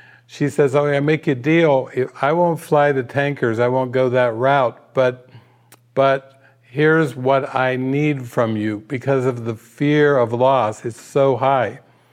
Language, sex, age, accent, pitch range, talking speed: English, male, 50-69, American, 130-160 Hz, 170 wpm